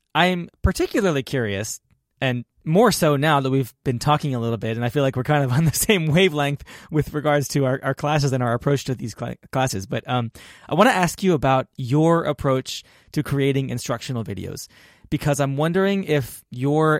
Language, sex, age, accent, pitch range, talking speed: English, male, 20-39, American, 125-150 Hz, 200 wpm